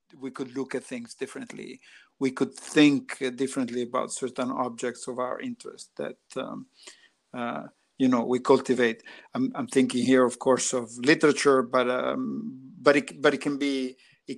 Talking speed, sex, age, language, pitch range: 165 wpm, male, 50-69, English, 125-150 Hz